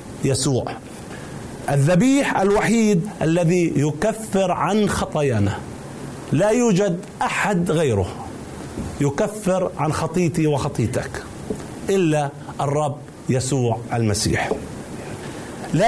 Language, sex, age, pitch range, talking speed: Arabic, male, 40-59, 150-215 Hz, 75 wpm